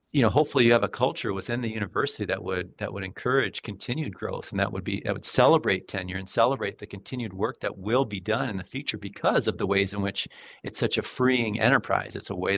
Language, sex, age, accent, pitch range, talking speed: English, male, 40-59, American, 95-120 Hz, 245 wpm